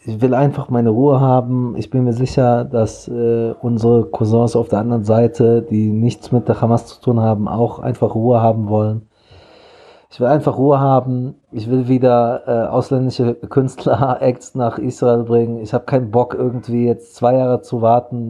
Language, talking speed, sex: German, 185 wpm, male